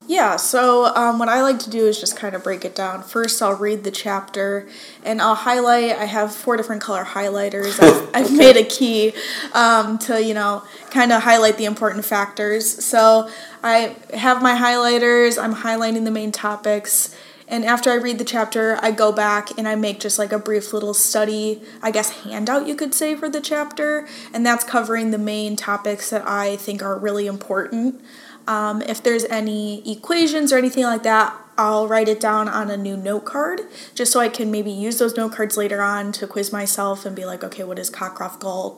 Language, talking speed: English, 205 wpm